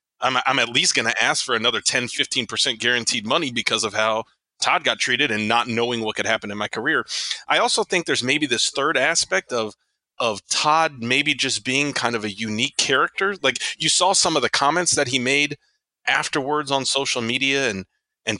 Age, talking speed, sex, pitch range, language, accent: 30-49, 205 wpm, male, 115-140 Hz, English, American